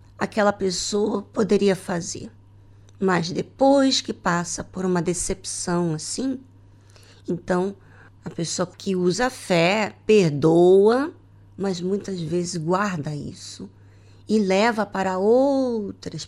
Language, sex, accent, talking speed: Portuguese, female, Brazilian, 105 wpm